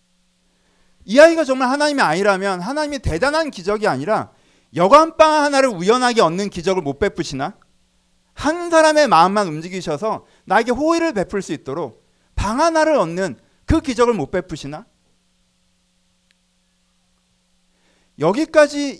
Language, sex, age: Korean, male, 40-59